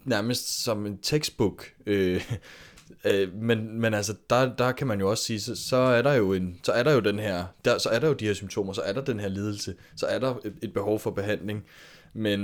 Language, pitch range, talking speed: Danish, 95-110 Hz, 245 wpm